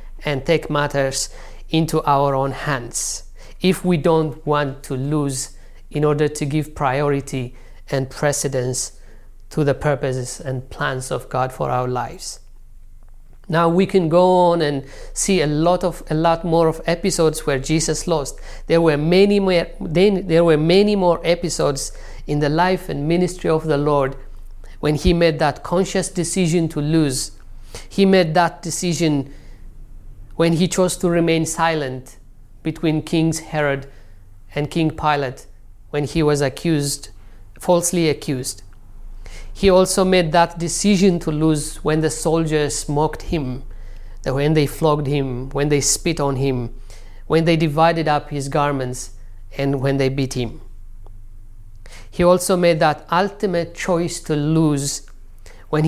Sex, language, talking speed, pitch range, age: male, English, 145 wpm, 130-165 Hz, 50-69